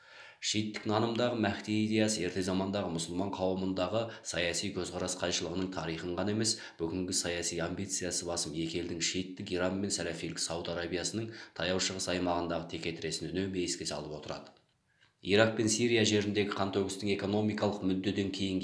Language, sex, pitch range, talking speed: Russian, male, 85-100 Hz, 105 wpm